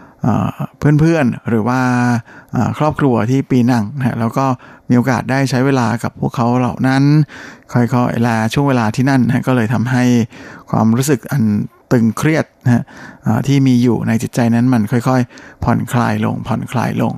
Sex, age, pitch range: male, 60-79, 115-135 Hz